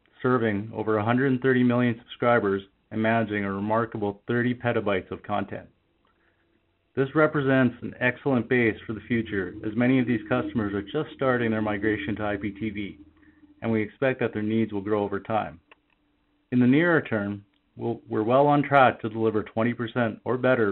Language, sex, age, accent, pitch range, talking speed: English, male, 40-59, American, 110-130 Hz, 160 wpm